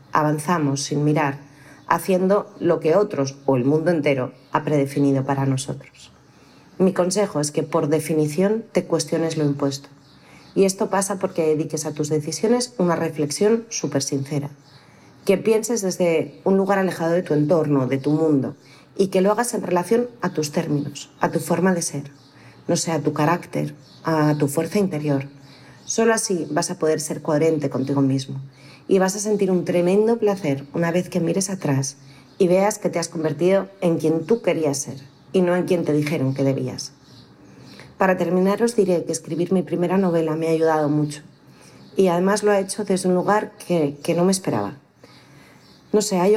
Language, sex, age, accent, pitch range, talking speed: Spanish, female, 40-59, Spanish, 145-185 Hz, 180 wpm